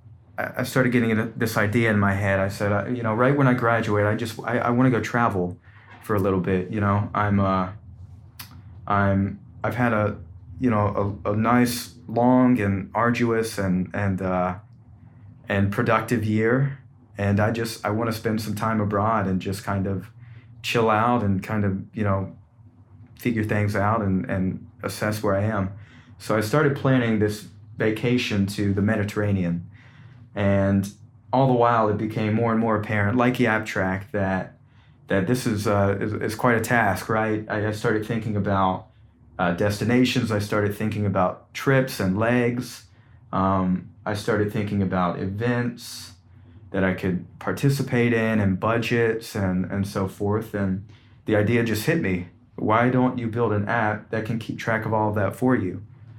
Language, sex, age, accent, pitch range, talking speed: English, male, 30-49, American, 100-115 Hz, 175 wpm